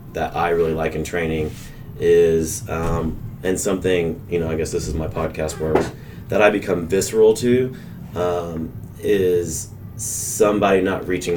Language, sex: English, male